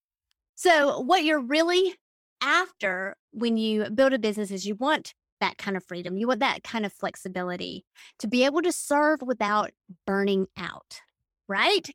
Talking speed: 160 wpm